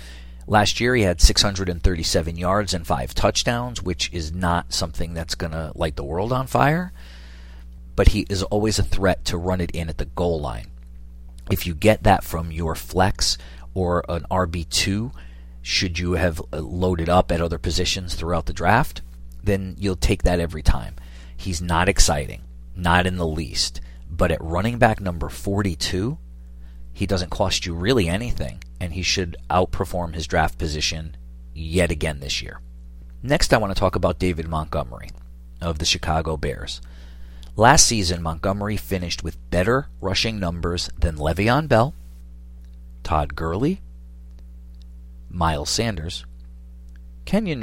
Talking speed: 150 wpm